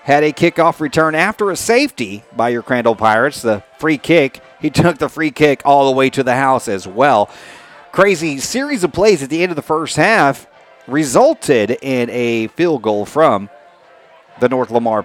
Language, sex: English, male